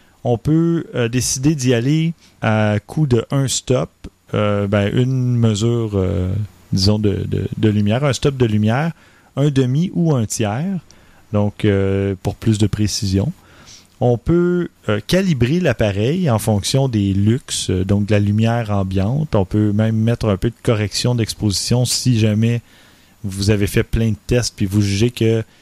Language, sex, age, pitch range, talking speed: French, male, 30-49, 105-125 Hz, 165 wpm